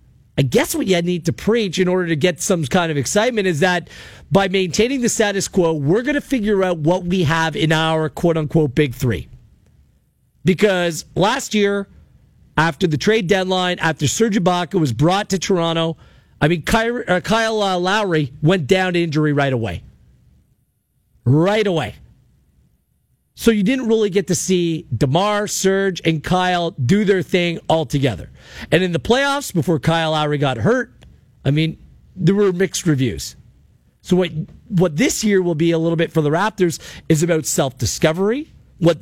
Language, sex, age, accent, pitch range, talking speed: English, male, 40-59, American, 160-195 Hz, 170 wpm